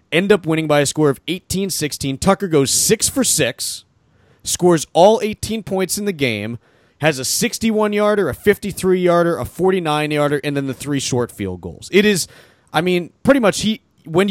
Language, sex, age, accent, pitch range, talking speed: English, male, 30-49, American, 135-185 Hz, 175 wpm